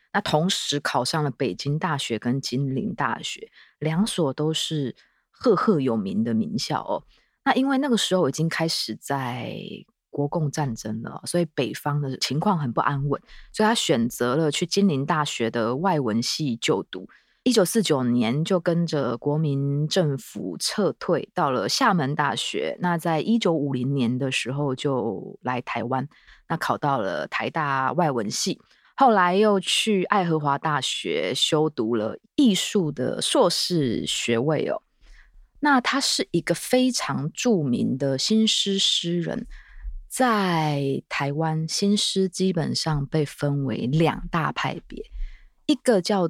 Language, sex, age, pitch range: Chinese, female, 20-39, 135-200 Hz